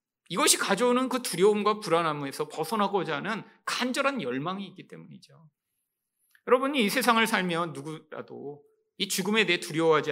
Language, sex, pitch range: Korean, male, 155-240 Hz